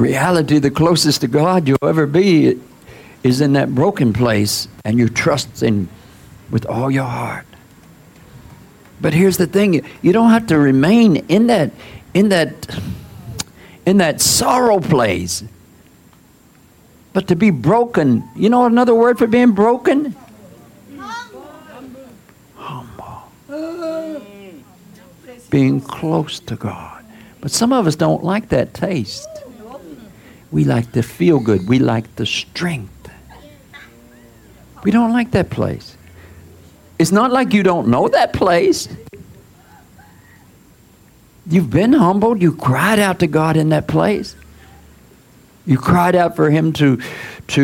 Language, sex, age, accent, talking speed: English, male, 60-79, American, 130 wpm